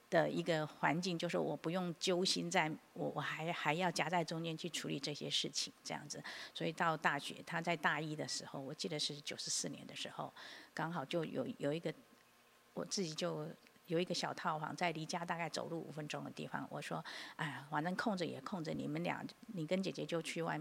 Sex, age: female, 50-69